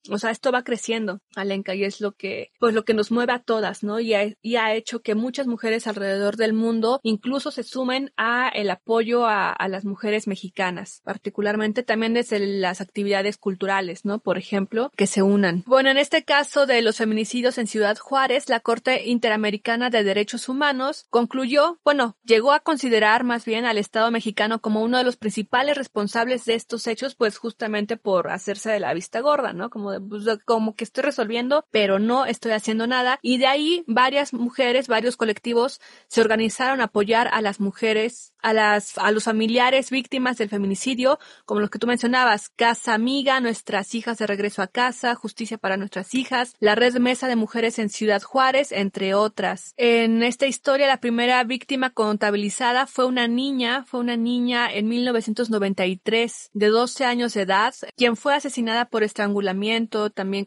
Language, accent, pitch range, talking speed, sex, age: Spanish, Mexican, 210-250 Hz, 180 wpm, female, 20-39